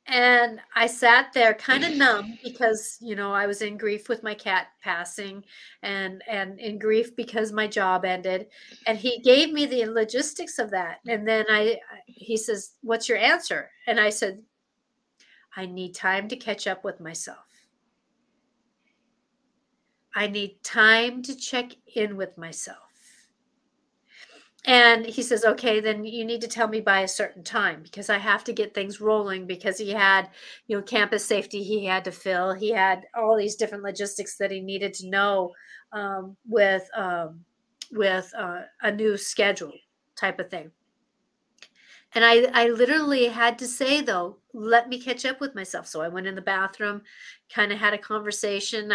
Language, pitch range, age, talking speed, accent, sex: English, 195-235 Hz, 40-59, 175 wpm, American, female